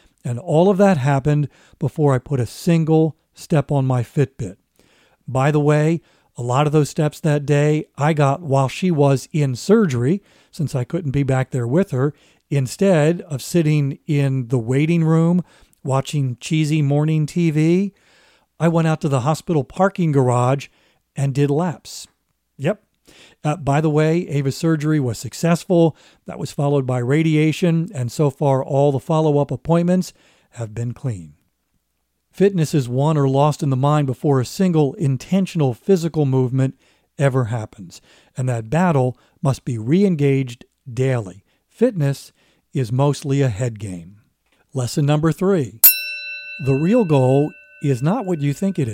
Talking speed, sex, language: 155 wpm, male, English